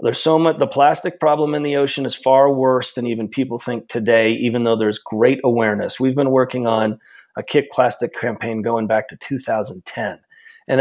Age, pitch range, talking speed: 30-49, 115-145 Hz, 195 wpm